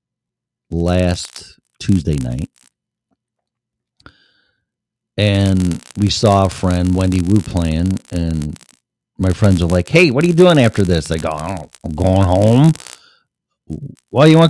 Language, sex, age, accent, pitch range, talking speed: English, male, 40-59, American, 85-120 Hz, 130 wpm